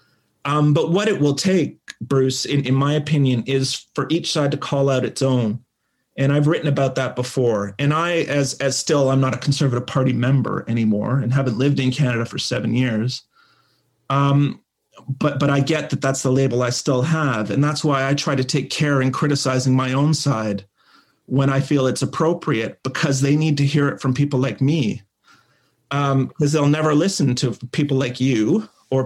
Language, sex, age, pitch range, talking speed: English, male, 30-49, 130-155 Hz, 200 wpm